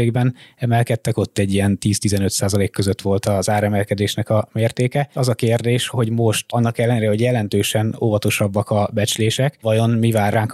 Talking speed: 160 wpm